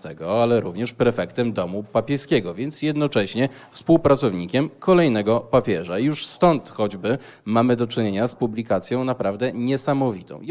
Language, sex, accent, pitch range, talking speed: Polish, male, native, 100-125 Hz, 120 wpm